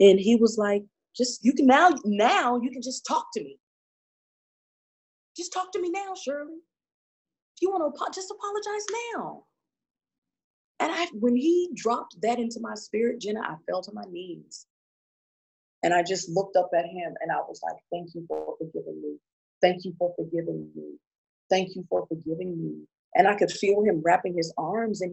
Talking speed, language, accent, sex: 190 wpm, English, American, female